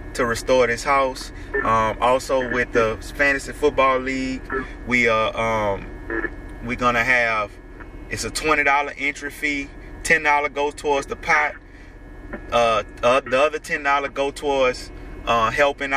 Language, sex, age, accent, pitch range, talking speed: English, male, 20-39, American, 115-140 Hz, 145 wpm